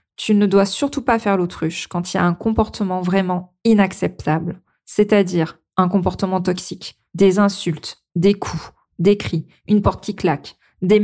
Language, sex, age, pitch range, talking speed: French, female, 20-39, 175-230 Hz, 165 wpm